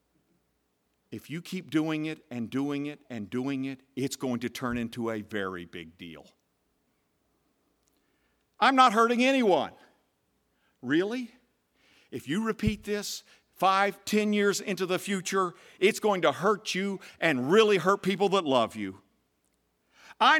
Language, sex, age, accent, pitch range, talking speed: English, male, 50-69, American, 150-240 Hz, 140 wpm